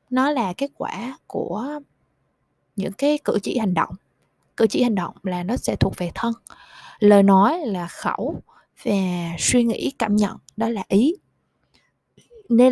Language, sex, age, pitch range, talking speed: Vietnamese, female, 20-39, 185-255 Hz, 160 wpm